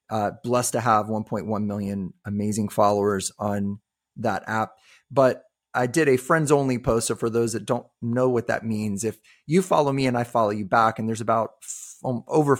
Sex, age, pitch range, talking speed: male, 30-49, 100-115 Hz, 195 wpm